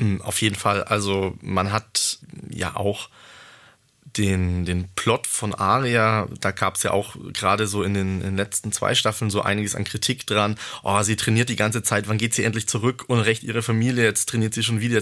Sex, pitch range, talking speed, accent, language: male, 105-125 Hz, 210 wpm, German, German